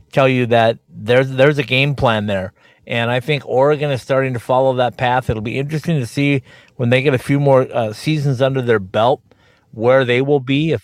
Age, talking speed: 50-69, 220 wpm